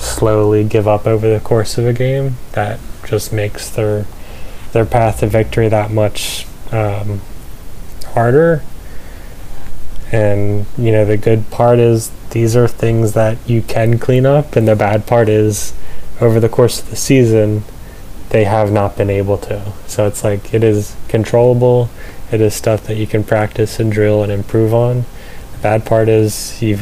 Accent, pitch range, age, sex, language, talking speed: American, 105-115 Hz, 10-29, male, English, 170 wpm